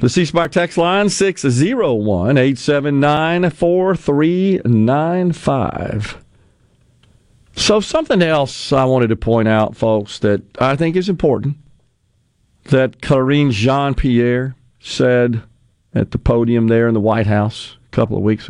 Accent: American